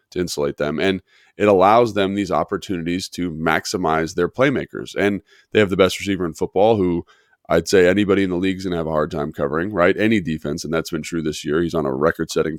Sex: male